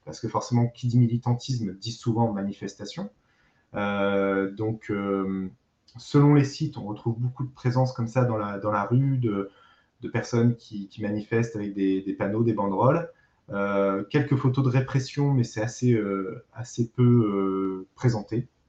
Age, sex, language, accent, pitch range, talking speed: 30-49, male, French, French, 105-125 Hz, 165 wpm